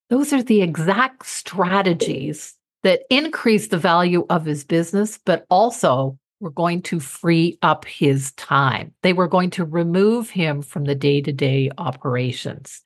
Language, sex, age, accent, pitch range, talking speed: English, female, 50-69, American, 155-215 Hz, 145 wpm